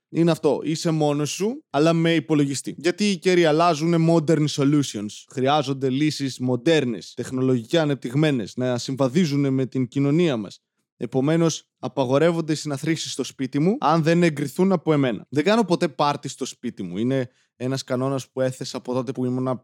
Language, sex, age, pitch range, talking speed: Greek, male, 20-39, 125-175 Hz, 160 wpm